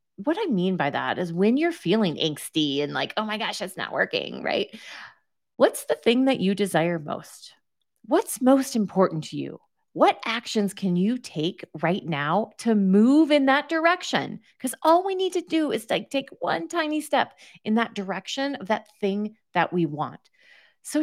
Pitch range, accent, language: 170-245 Hz, American, English